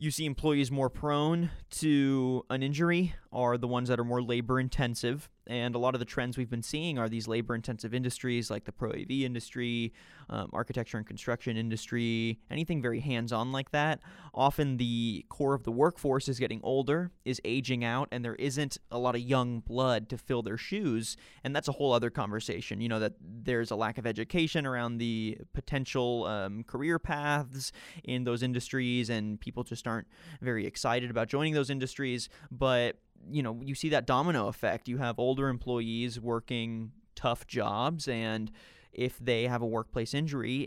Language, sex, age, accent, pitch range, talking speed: English, male, 20-39, American, 115-140 Hz, 180 wpm